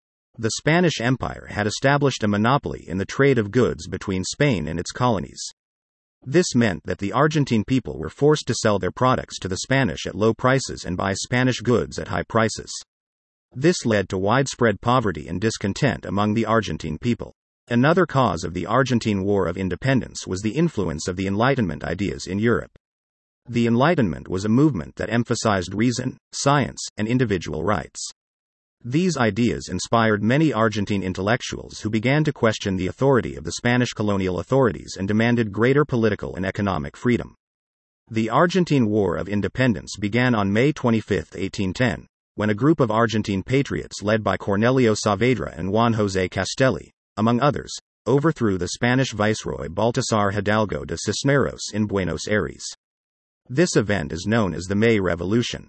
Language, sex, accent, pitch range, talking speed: English, male, American, 95-125 Hz, 165 wpm